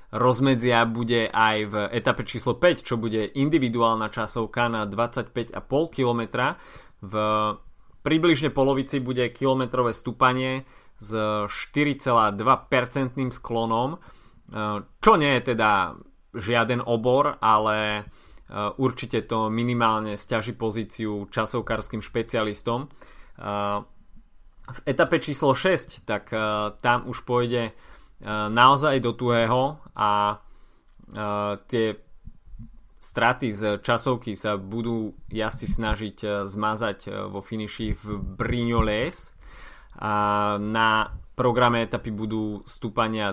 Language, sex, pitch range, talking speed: Slovak, male, 105-125 Hz, 95 wpm